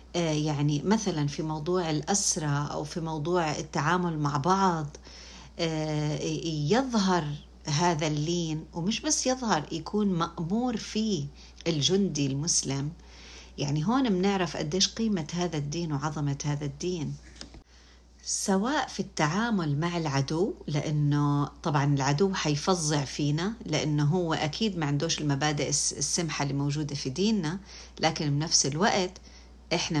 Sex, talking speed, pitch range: female, 115 wpm, 145-185 Hz